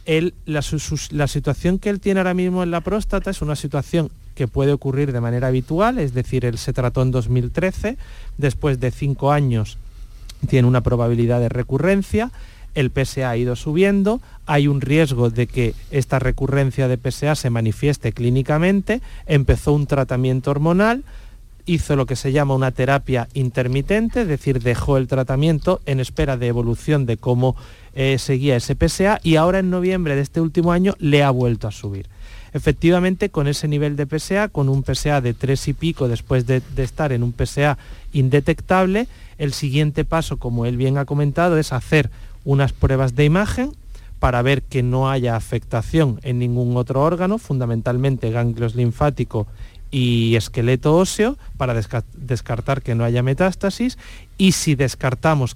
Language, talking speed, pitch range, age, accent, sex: Spanish, 170 wpm, 125-160 Hz, 40-59, Spanish, male